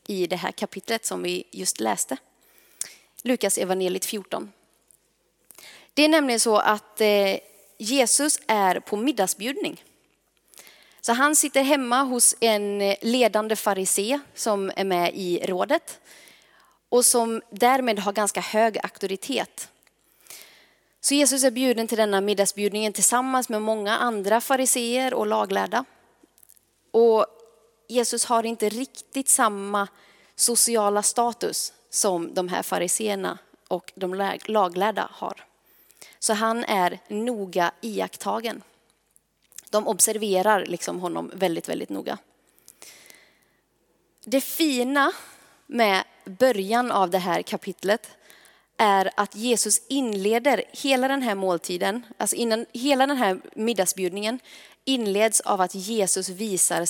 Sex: female